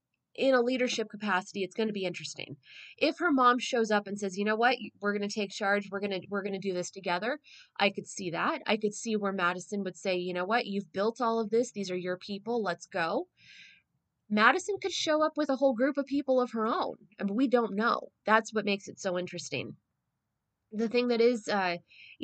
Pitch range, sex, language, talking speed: 185-240 Hz, female, English, 230 wpm